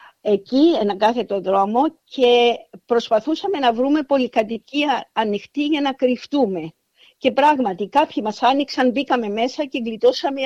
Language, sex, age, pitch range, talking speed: Greek, female, 50-69, 220-280 Hz, 125 wpm